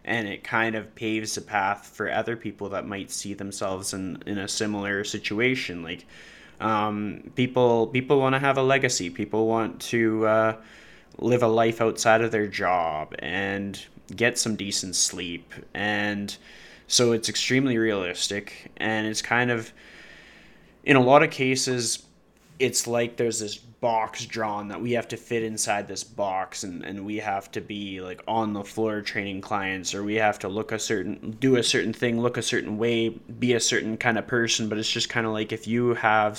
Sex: male